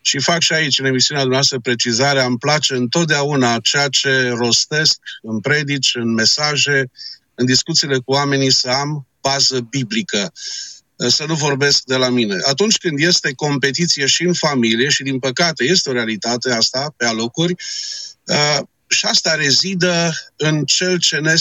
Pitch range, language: 130-170 Hz, Romanian